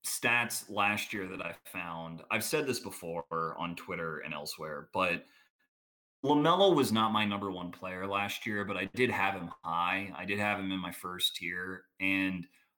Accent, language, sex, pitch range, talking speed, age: American, English, male, 95-120 Hz, 185 wpm, 30-49